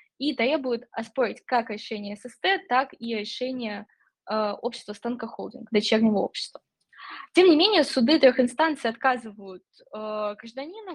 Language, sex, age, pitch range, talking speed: Russian, female, 10-29, 220-275 Hz, 125 wpm